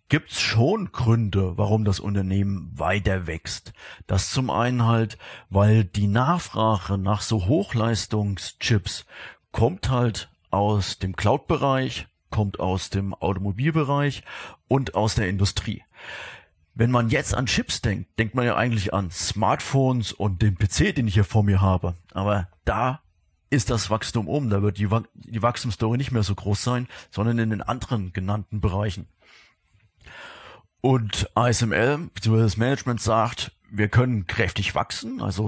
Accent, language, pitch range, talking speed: German, German, 100-115 Hz, 145 wpm